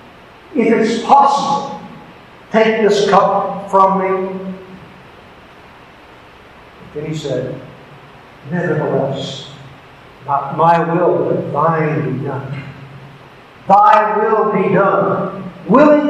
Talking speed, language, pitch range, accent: 85 wpm, English, 160-205 Hz, American